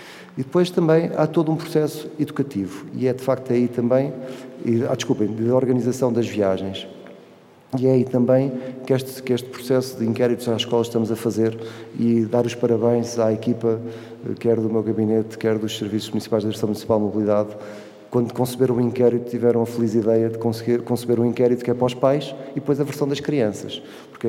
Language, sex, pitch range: Portuguese, male, 115-125 Hz